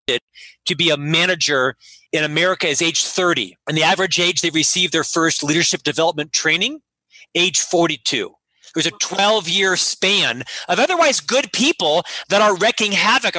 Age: 40-59